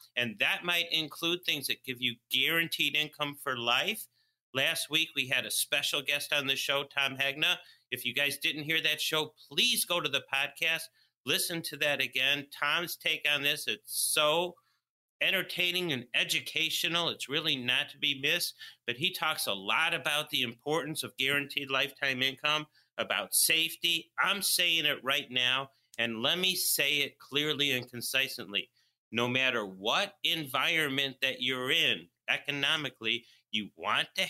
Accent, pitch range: American, 125-160 Hz